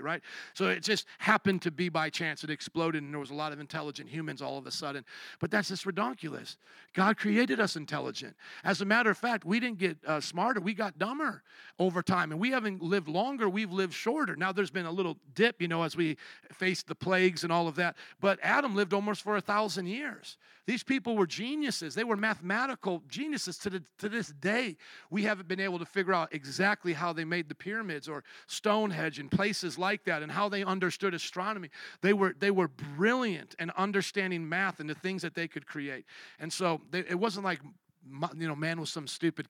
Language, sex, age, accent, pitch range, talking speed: English, male, 50-69, American, 165-215 Hz, 215 wpm